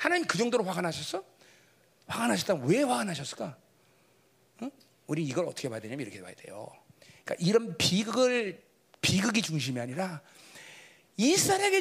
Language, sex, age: Korean, male, 40-59